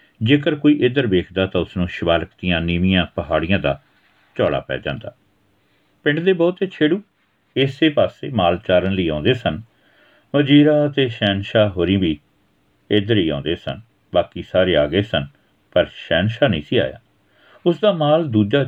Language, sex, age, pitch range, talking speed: Punjabi, male, 50-69, 100-145 Hz, 155 wpm